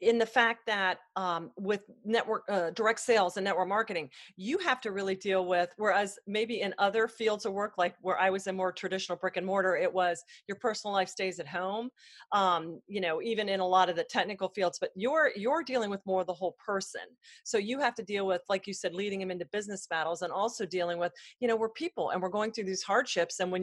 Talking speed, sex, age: 240 wpm, female, 40-59